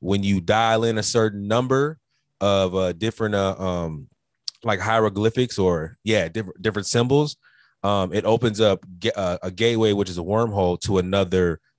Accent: American